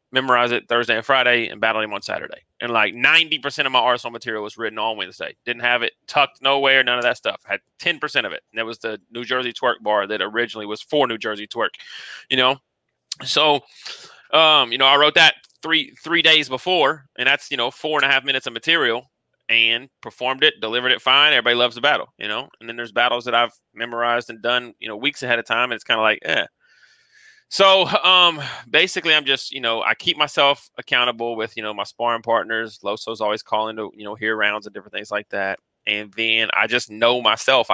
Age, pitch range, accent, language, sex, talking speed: 30-49, 110-130 Hz, American, English, male, 230 wpm